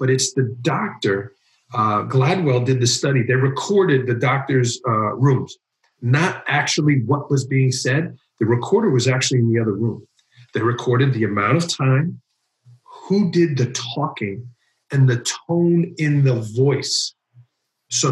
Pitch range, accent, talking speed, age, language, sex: 120-145 Hz, American, 150 wpm, 50-69, English, male